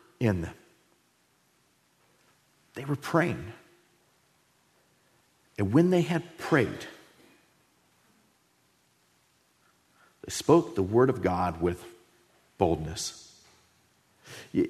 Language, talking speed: English, 80 wpm